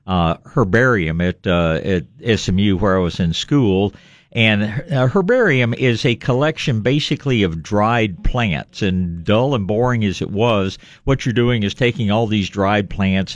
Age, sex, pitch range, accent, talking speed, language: 50-69, male, 105-145 Hz, American, 165 wpm, English